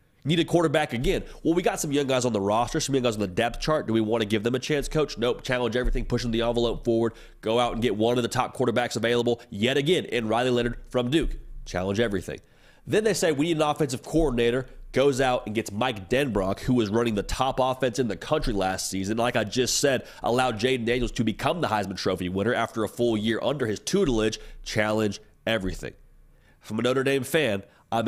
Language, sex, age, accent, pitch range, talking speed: English, male, 30-49, American, 110-135 Hz, 230 wpm